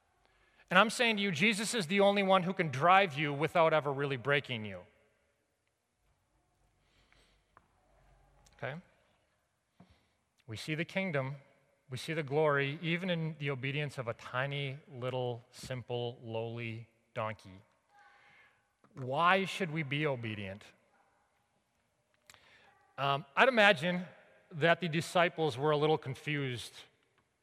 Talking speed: 120 wpm